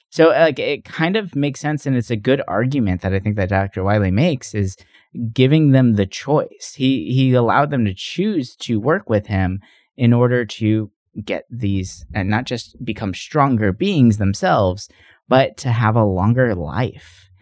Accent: American